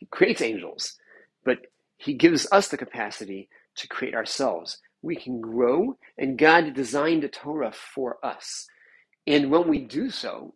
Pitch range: 130-165 Hz